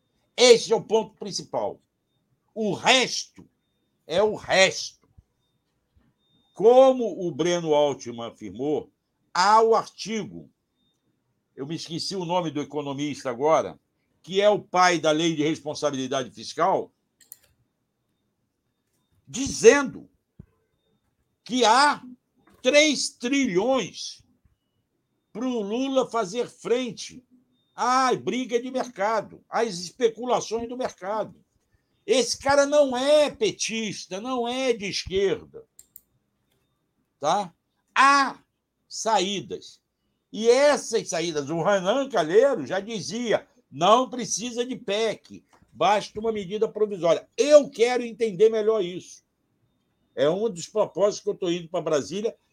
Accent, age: Brazilian, 60-79